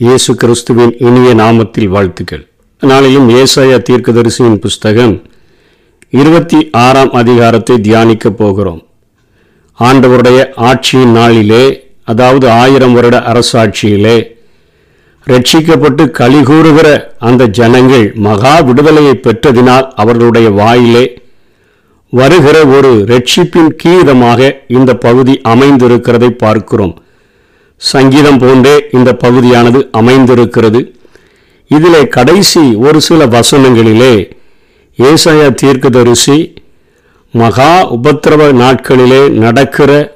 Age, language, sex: 50-69, Tamil, male